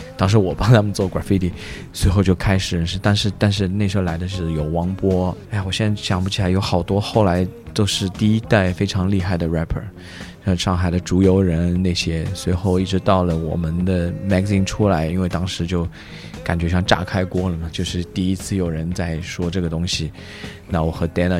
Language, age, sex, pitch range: Chinese, 20-39, male, 85-95 Hz